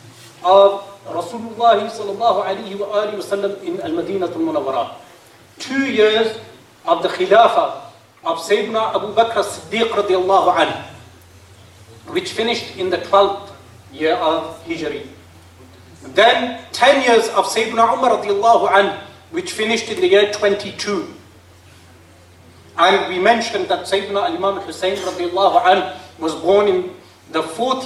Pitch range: 170-230 Hz